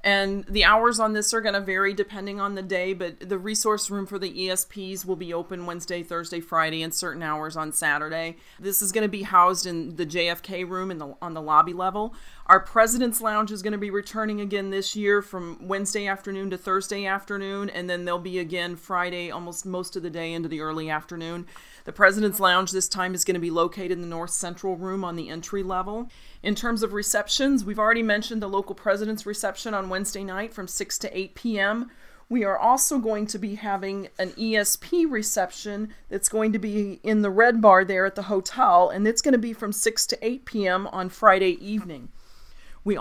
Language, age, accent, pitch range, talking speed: English, 30-49, American, 180-210 Hz, 215 wpm